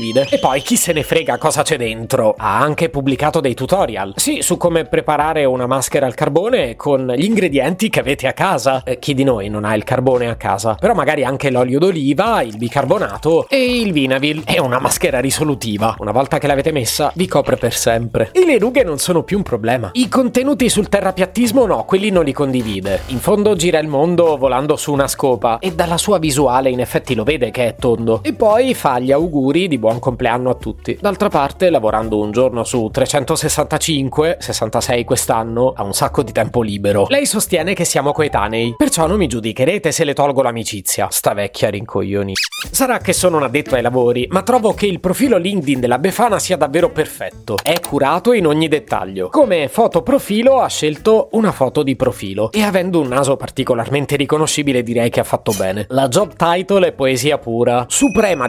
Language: Italian